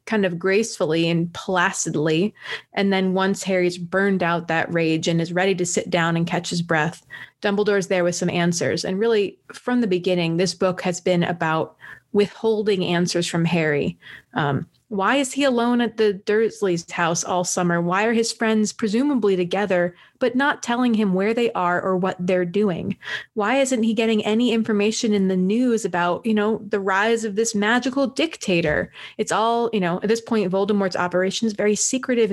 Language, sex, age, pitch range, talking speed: English, female, 20-39, 175-220 Hz, 185 wpm